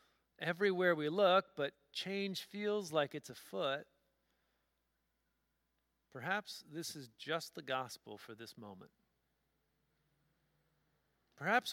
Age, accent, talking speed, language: 50-69, American, 95 wpm, English